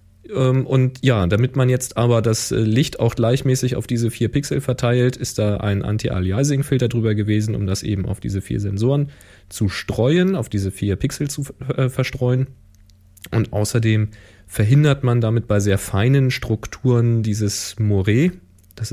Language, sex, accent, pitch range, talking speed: German, male, German, 100-120 Hz, 150 wpm